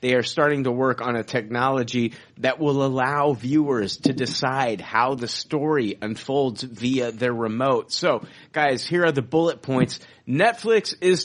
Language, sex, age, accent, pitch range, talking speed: English, male, 30-49, American, 120-150 Hz, 160 wpm